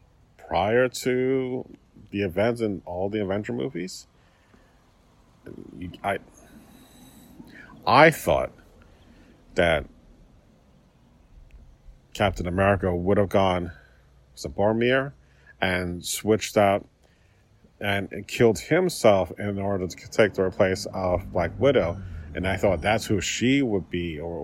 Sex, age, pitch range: male, 40-59, 85-105 Hz